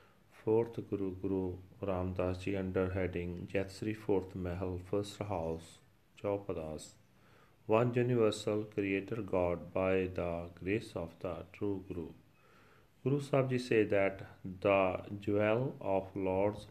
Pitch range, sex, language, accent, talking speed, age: 95-105 Hz, male, English, Indian, 110 wpm, 30-49